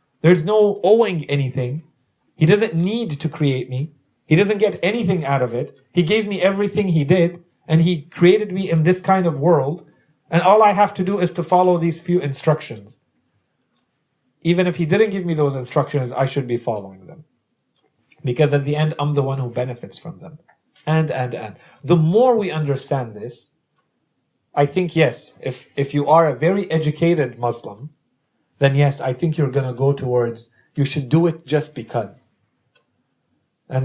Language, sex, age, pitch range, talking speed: English, male, 40-59, 125-165 Hz, 185 wpm